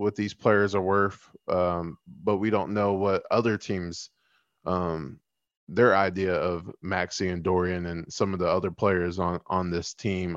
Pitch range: 95-115 Hz